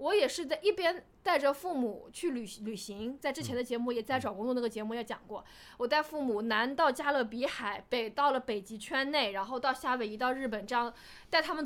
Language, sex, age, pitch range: Chinese, female, 20-39, 225-295 Hz